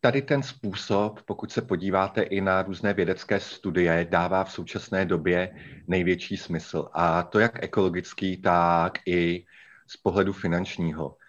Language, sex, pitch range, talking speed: Slovak, male, 95-110 Hz, 140 wpm